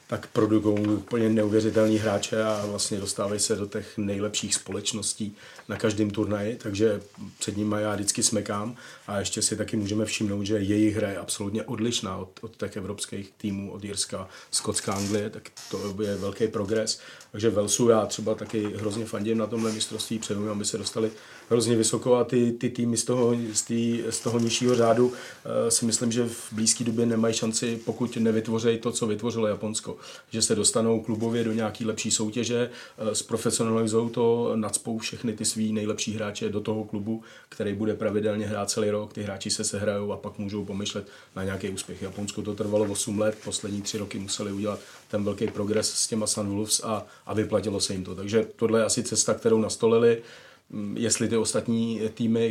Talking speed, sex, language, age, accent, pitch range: 185 wpm, male, Czech, 40-59, native, 105-115 Hz